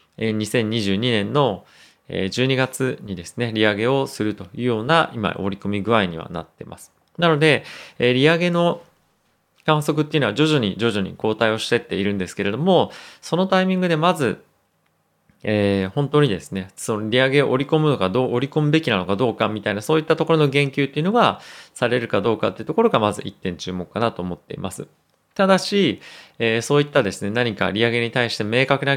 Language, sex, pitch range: Japanese, male, 100-140 Hz